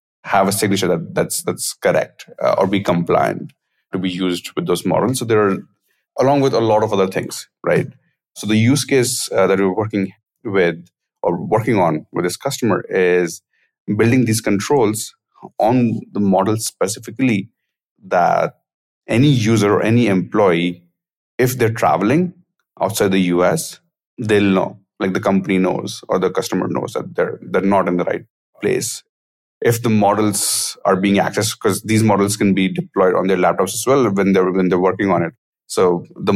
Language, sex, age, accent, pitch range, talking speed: English, male, 30-49, Indian, 95-115 Hz, 175 wpm